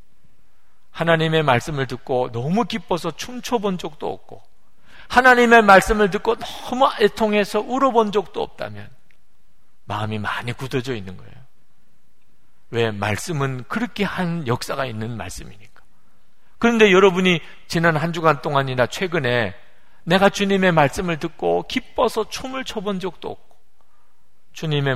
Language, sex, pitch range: Korean, male, 125-210 Hz